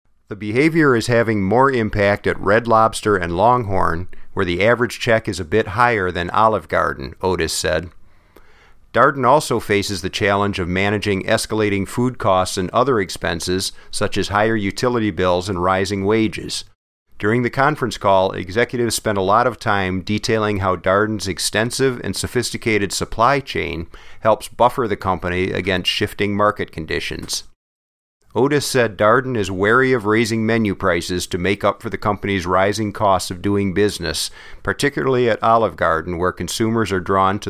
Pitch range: 95-115 Hz